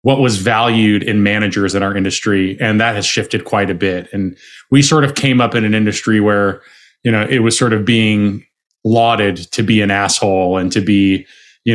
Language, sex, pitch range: English, male, 105-135 Hz